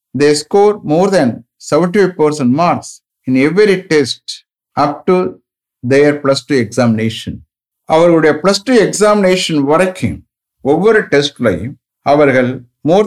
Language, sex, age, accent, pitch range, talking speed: English, male, 50-69, Indian, 120-175 Hz, 120 wpm